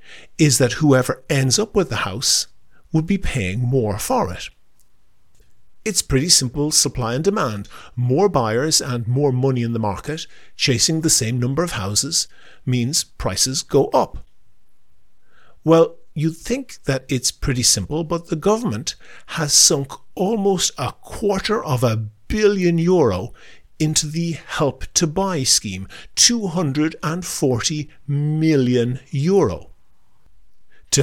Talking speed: 125 wpm